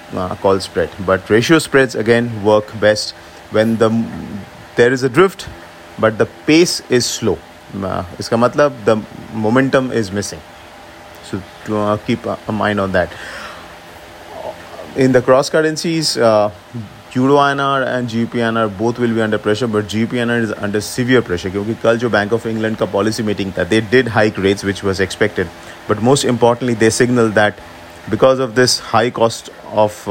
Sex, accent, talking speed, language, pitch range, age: male, Indian, 160 wpm, English, 100-120 Hz, 30-49